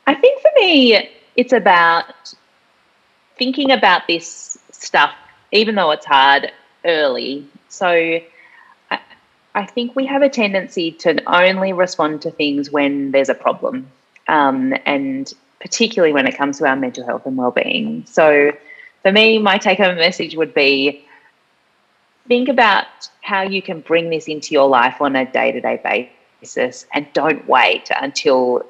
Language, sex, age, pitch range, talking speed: English, female, 30-49, 135-195 Hz, 145 wpm